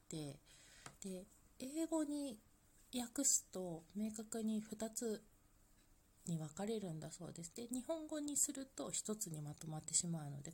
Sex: female